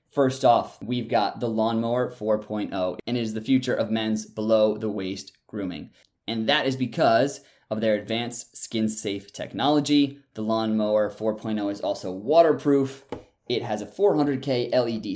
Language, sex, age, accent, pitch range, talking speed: English, male, 20-39, American, 110-125 Hz, 145 wpm